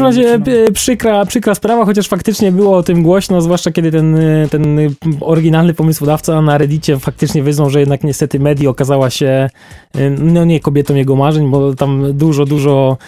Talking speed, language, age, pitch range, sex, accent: 170 wpm, Polish, 20-39, 140-175 Hz, male, native